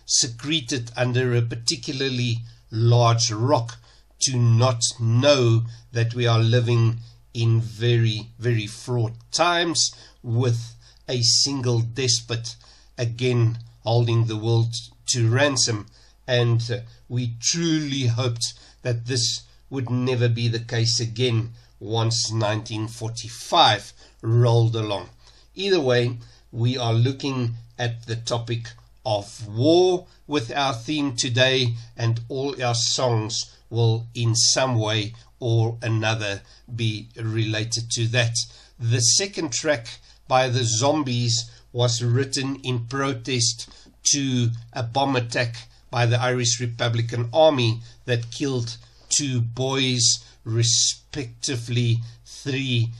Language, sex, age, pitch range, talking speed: English, male, 60-79, 115-125 Hz, 110 wpm